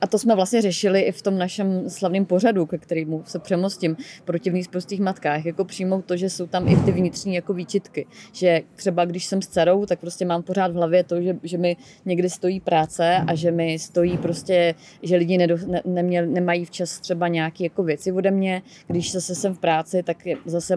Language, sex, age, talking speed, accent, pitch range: Czech, female, 30-49, 215 wpm, native, 170-190 Hz